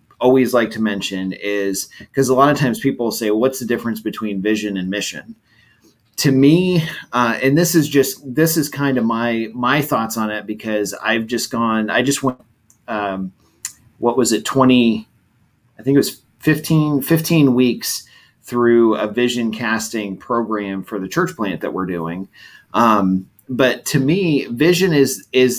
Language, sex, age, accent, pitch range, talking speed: English, male, 30-49, American, 105-135 Hz, 170 wpm